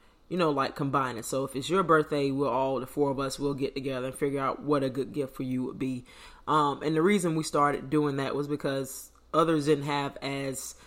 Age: 20-39